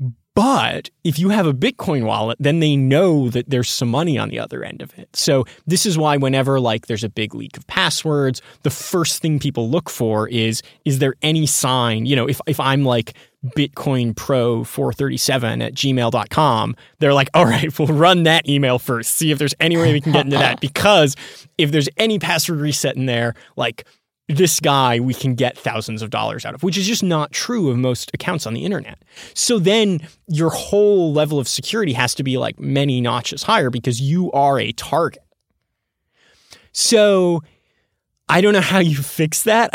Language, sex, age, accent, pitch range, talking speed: English, male, 20-39, American, 125-160 Hz, 195 wpm